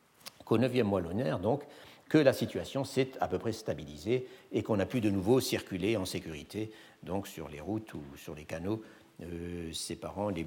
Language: French